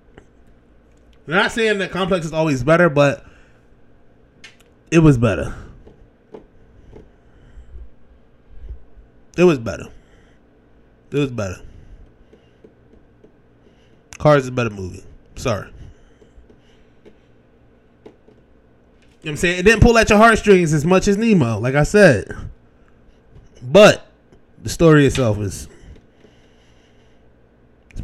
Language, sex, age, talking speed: English, male, 20-39, 100 wpm